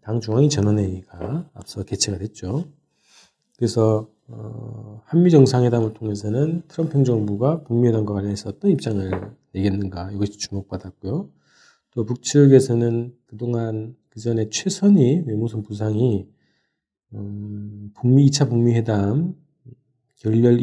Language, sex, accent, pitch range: Korean, male, native, 105-140 Hz